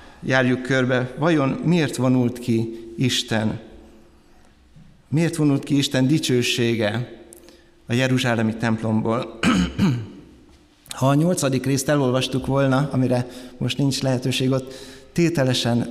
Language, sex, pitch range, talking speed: Hungarian, male, 115-140 Hz, 105 wpm